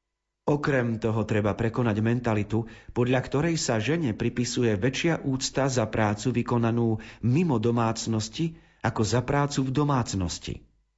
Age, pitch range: 40-59, 110-135 Hz